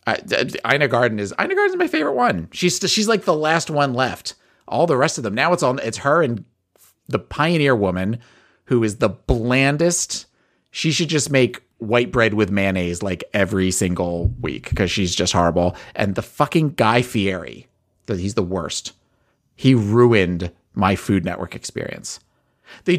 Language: English